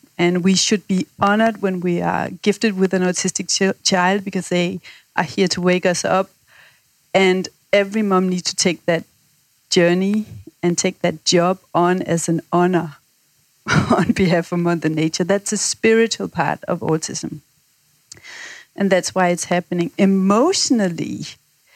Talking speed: 150 wpm